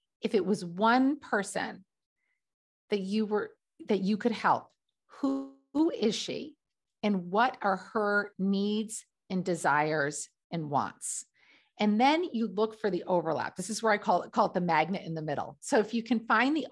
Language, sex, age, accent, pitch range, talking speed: English, female, 50-69, American, 190-245 Hz, 185 wpm